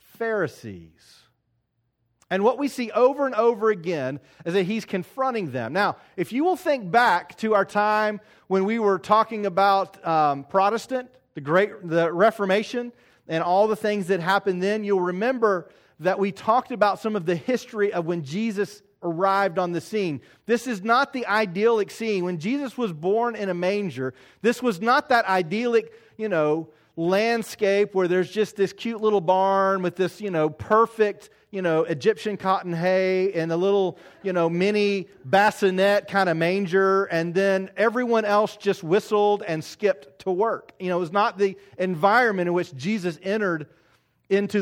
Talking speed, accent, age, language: 170 wpm, American, 40-59, English